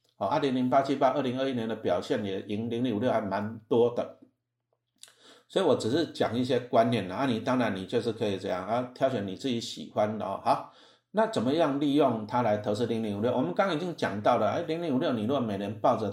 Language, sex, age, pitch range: Chinese, male, 60-79, 110-135 Hz